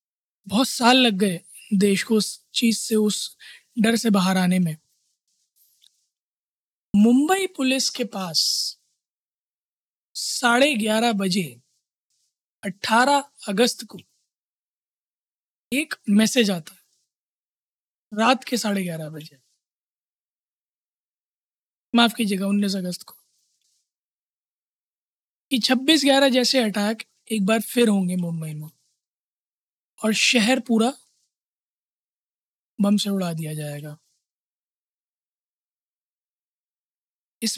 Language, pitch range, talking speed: Hindi, 195-245 Hz, 95 wpm